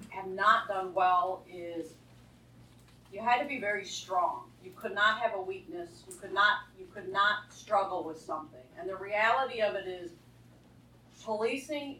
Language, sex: English, female